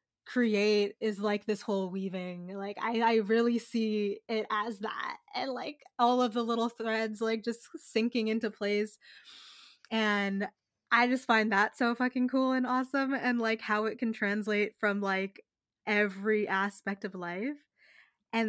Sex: female